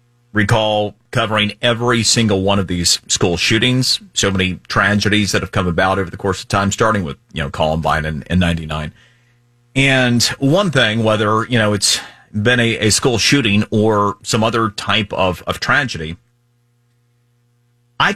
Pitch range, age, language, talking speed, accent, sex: 105-125 Hz, 30-49, English, 160 wpm, American, male